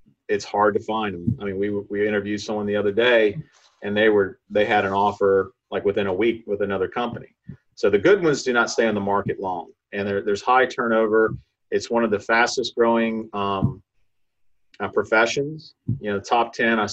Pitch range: 100-130 Hz